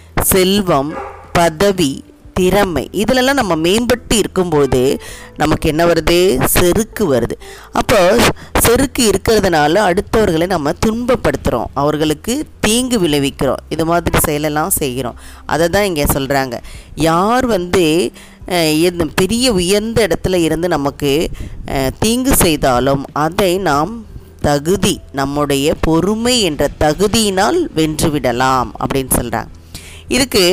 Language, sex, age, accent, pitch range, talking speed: Tamil, female, 20-39, native, 140-195 Hz, 95 wpm